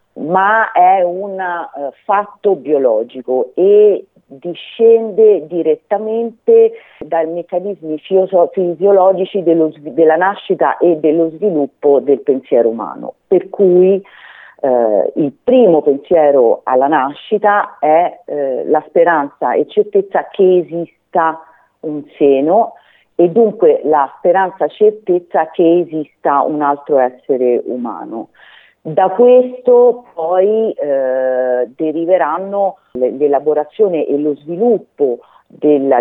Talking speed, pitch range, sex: 105 wpm, 140-205 Hz, female